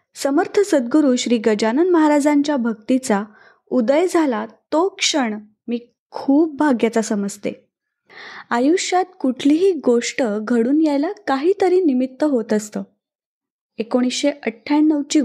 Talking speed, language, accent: 100 wpm, Marathi, native